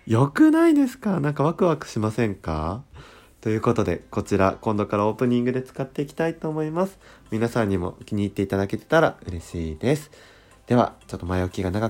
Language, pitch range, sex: Japanese, 90-130 Hz, male